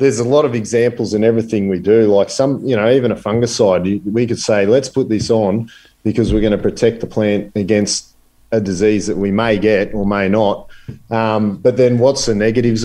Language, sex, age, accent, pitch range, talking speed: English, male, 40-59, Australian, 105-120 Hz, 215 wpm